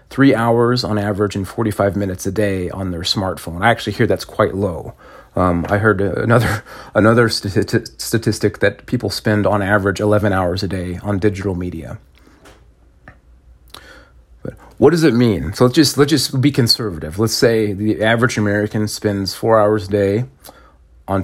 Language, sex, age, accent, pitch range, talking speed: English, male, 30-49, American, 90-120 Hz, 165 wpm